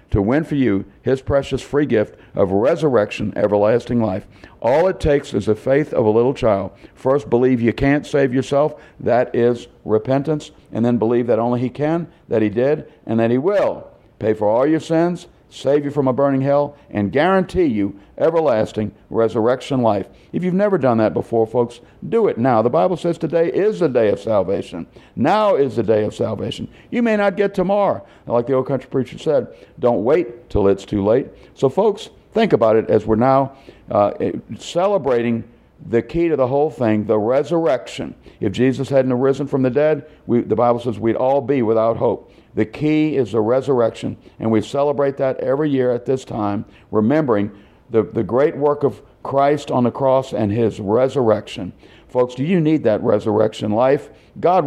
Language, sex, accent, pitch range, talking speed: English, male, American, 115-145 Hz, 190 wpm